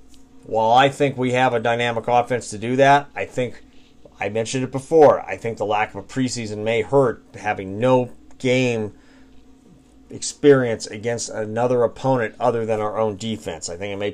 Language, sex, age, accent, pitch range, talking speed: English, male, 40-59, American, 105-130 Hz, 180 wpm